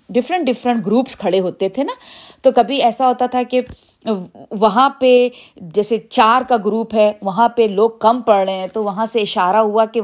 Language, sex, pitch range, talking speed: Urdu, female, 195-255 Hz, 195 wpm